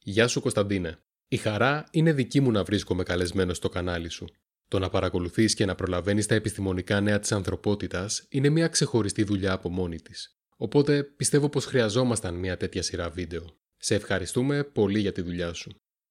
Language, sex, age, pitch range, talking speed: Greek, male, 20-39, 100-135 Hz, 175 wpm